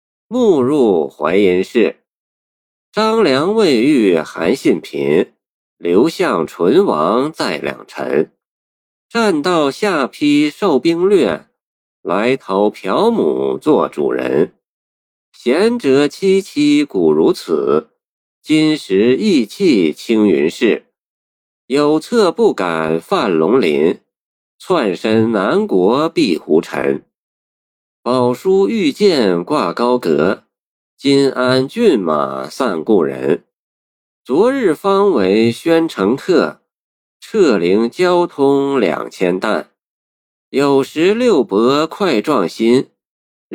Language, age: Chinese, 50-69